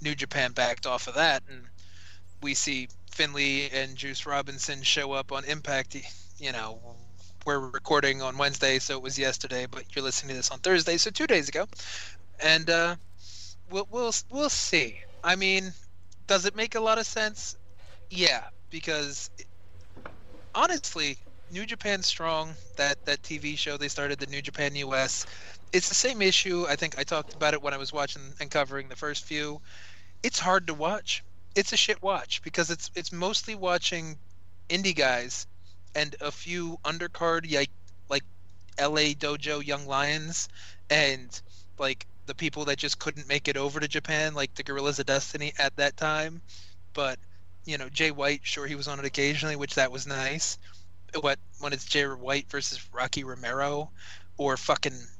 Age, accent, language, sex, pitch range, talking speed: 20-39, American, English, male, 120-155 Hz, 175 wpm